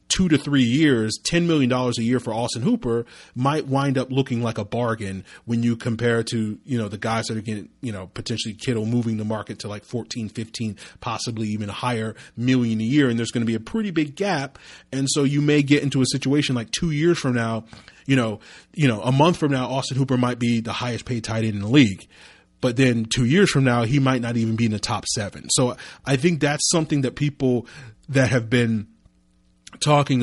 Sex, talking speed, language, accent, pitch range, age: male, 230 wpm, English, American, 110-135 Hz, 30-49